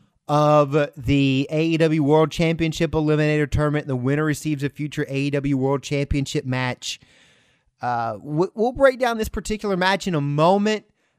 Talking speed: 140 wpm